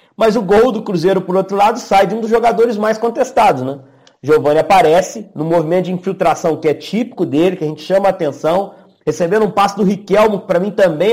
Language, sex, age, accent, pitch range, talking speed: Portuguese, male, 40-59, Brazilian, 170-210 Hz, 220 wpm